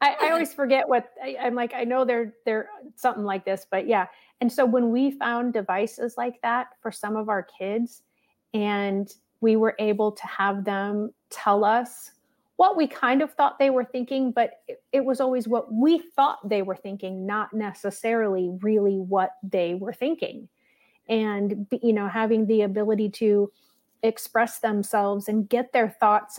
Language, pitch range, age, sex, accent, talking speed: English, 205-250 Hz, 30-49, female, American, 175 wpm